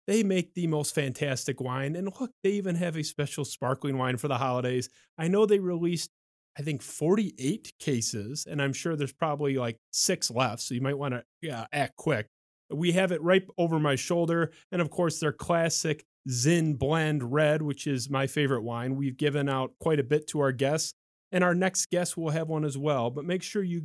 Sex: male